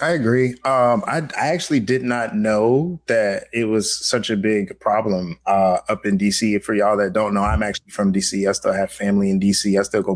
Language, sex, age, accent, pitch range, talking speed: English, male, 20-39, American, 100-130 Hz, 225 wpm